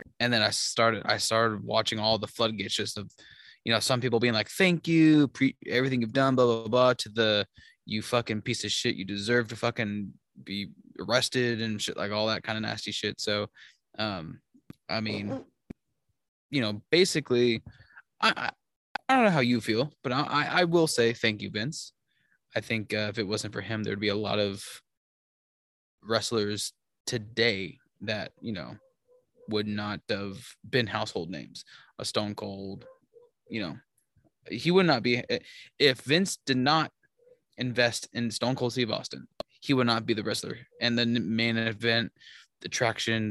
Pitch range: 105-125 Hz